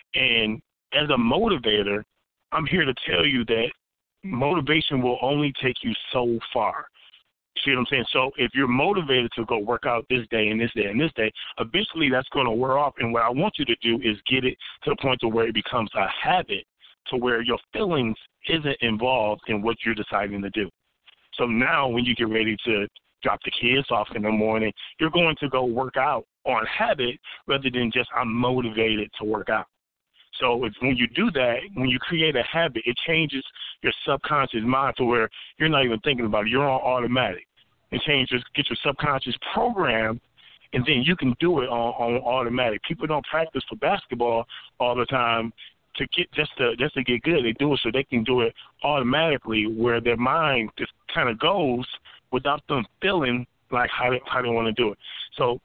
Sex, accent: male, American